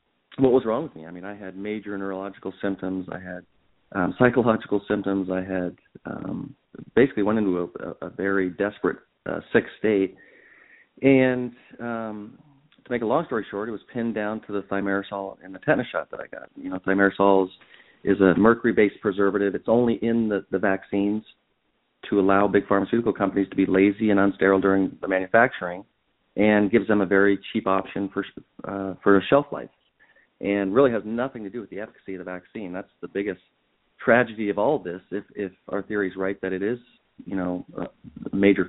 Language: English